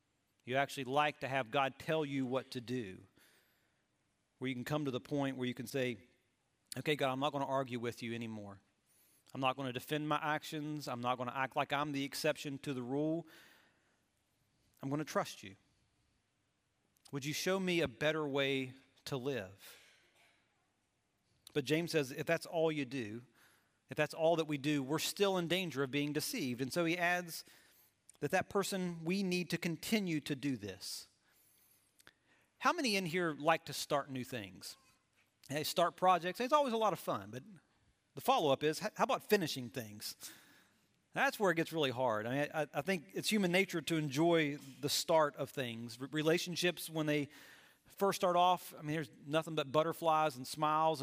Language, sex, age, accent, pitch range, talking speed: English, male, 40-59, American, 130-165 Hz, 190 wpm